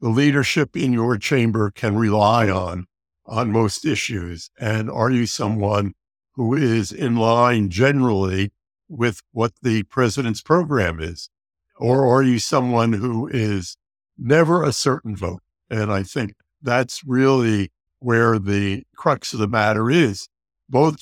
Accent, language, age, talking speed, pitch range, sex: American, English, 60-79, 140 wpm, 105-135 Hz, male